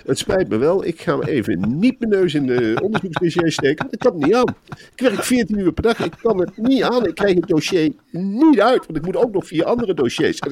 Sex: male